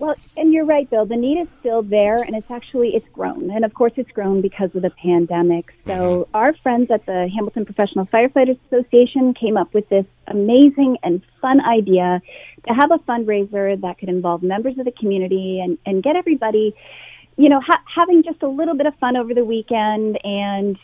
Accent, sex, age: American, female, 30-49